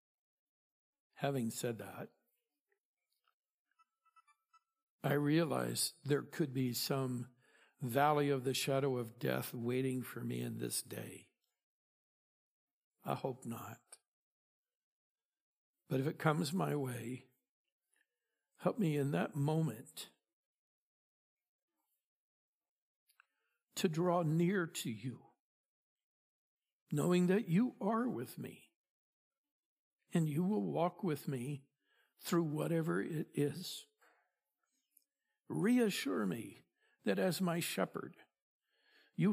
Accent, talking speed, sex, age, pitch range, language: American, 95 wpm, male, 60-79, 135-200 Hz, English